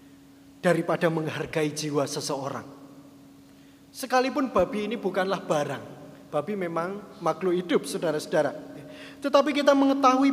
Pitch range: 145-240 Hz